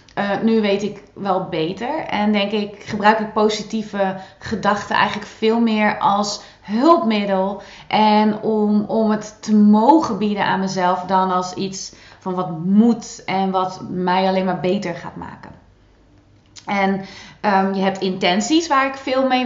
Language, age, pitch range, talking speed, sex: Dutch, 20-39, 185-215 Hz, 150 wpm, female